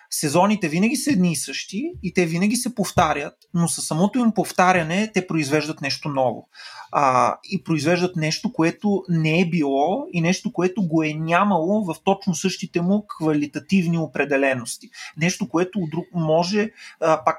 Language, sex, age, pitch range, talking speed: Bulgarian, male, 30-49, 155-195 Hz, 150 wpm